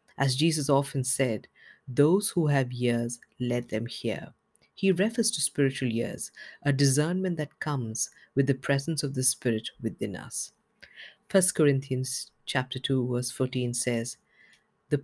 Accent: Indian